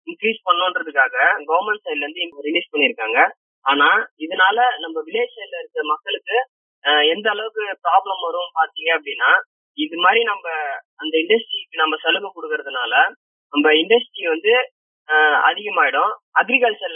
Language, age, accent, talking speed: Tamil, 20-39, native, 120 wpm